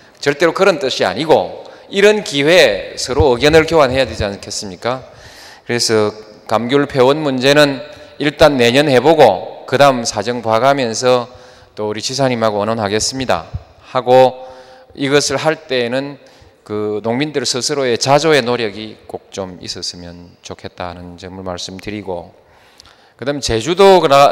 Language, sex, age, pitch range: Korean, male, 20-39, 105-145 Hz